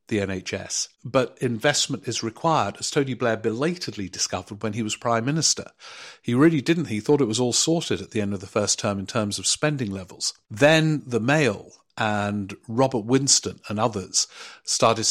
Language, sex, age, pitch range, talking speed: English, male, 50-69, 100-120 Hz, 185 wpm